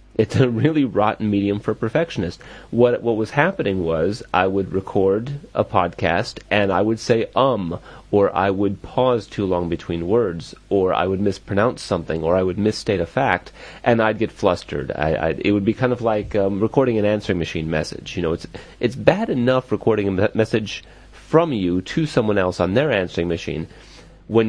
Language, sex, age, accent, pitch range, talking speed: English, male, 30-49, American, 95-120 Hz, 190 wpm